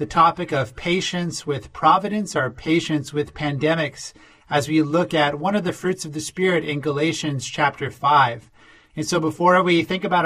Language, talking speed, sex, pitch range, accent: English, 180 wpm, male, 145-180 Hz, American